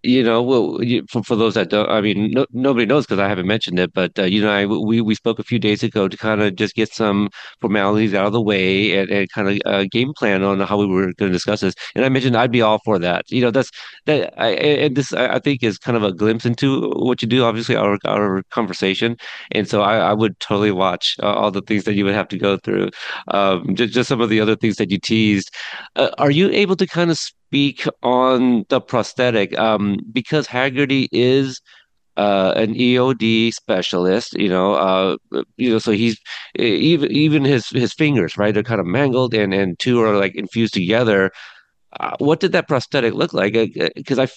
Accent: American